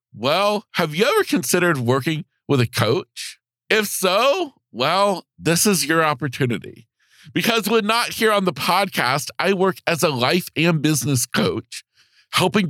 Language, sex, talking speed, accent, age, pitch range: English, male, 150 wpm, American, 40-59, 135-200 Hz